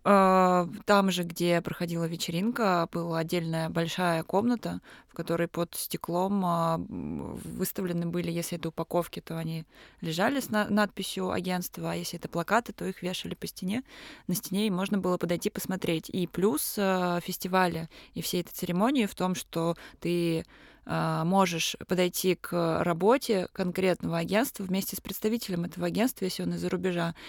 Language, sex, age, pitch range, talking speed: Russian, female, 20-39, 175-195 Hz, 145 wpm